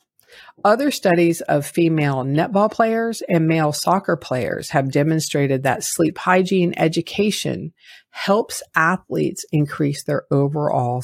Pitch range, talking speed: 140-175 Hz, 115 wpm